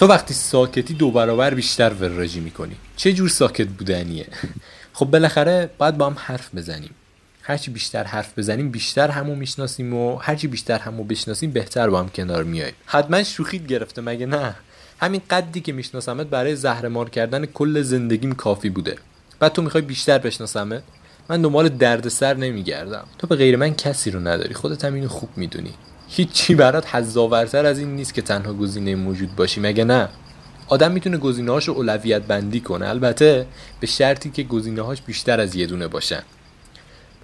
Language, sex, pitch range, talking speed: Persian, male, 110-145 Hz, 170 wpm